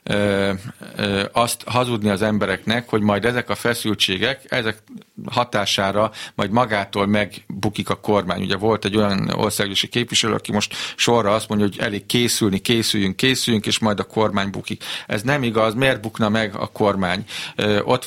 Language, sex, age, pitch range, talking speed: Hungarian, male, 50-69, 100-120 Hz, 155 wpm